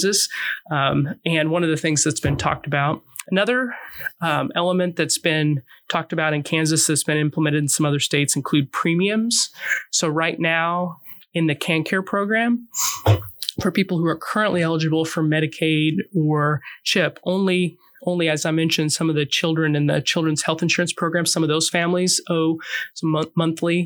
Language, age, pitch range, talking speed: English, 20-39, 155-180 Hz, 170 wpm